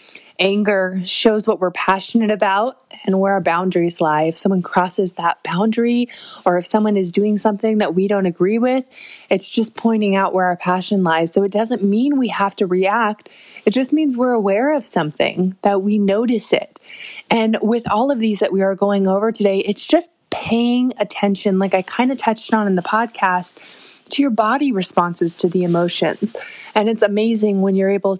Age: 20-39